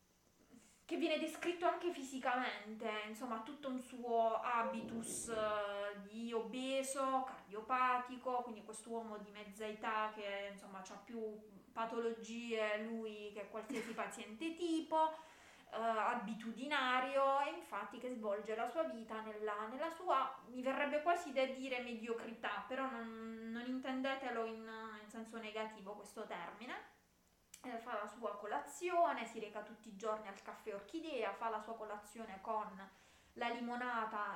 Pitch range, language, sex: 210-255 Hz, Italian, female